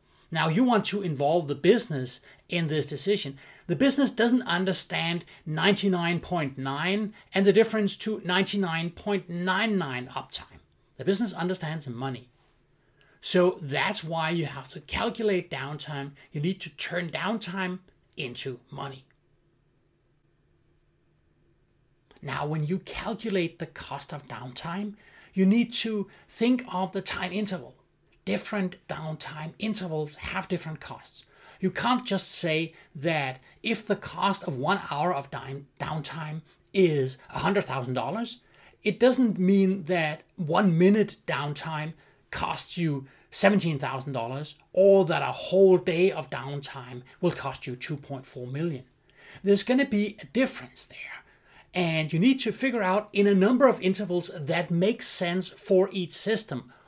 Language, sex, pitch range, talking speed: English, male, 145-200 Hz, 130 wpm